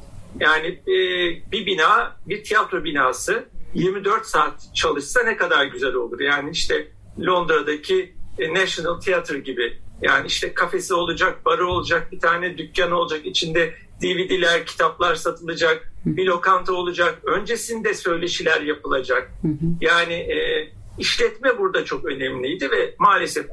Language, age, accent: Turkish, 50-69, native